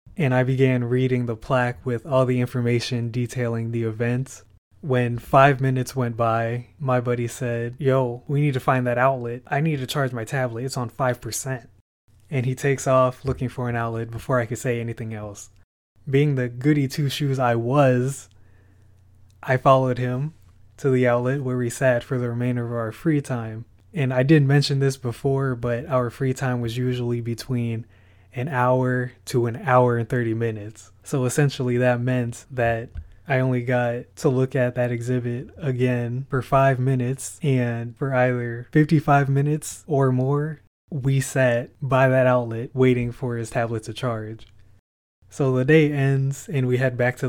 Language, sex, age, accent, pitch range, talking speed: English, male, 20-39, American, 115-130 Hz, 175 wpm